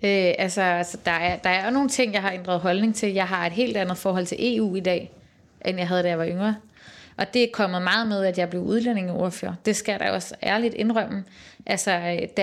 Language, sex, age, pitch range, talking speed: Danish, female, 30-49, 180-210 Hz, 245 wpm